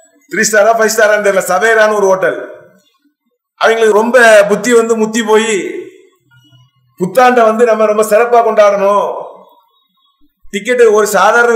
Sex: male